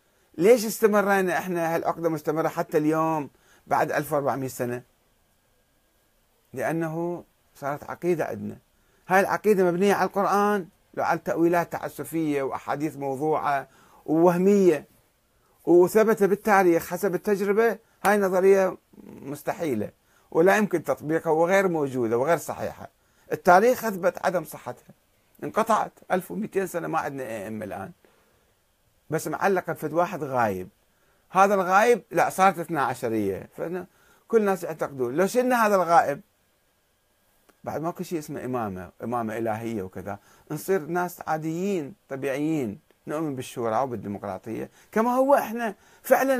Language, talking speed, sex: Arabic, 115 wpm, male